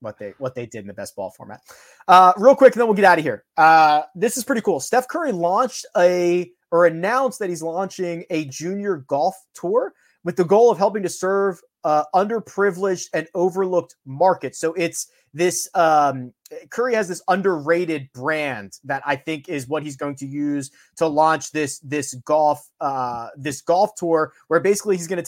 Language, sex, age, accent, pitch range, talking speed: English, male, 30-49, American, 150-190 Hz, 195 wpm